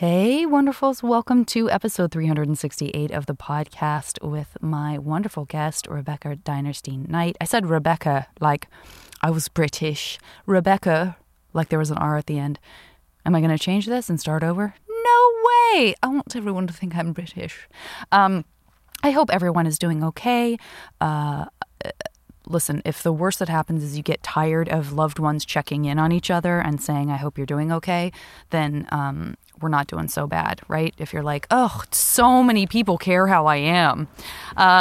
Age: 20-39